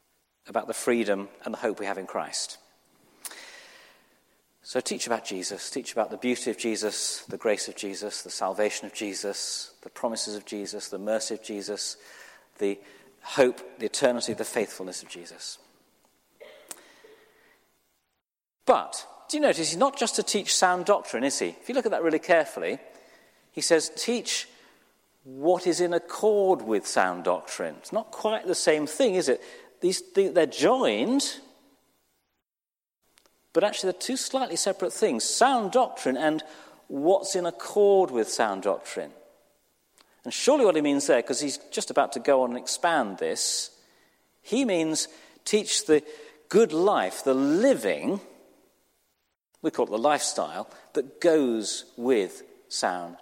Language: English